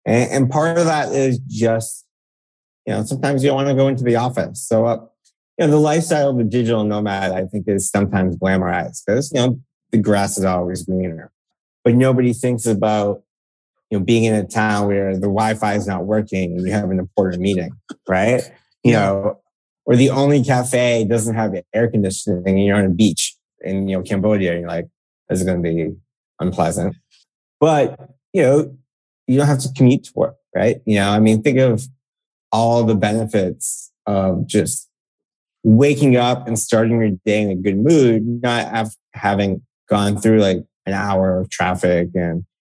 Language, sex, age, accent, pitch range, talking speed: English, male, 20-39, American, 95-125 Hz, 185 wpm